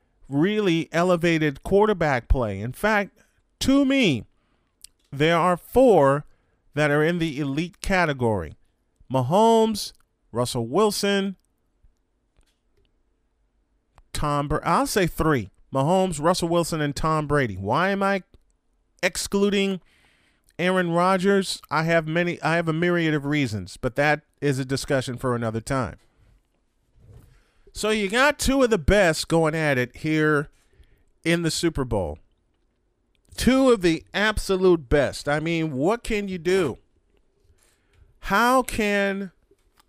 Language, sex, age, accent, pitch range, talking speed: English, male, 40-59, American, 120-175 Hz, 120 wpm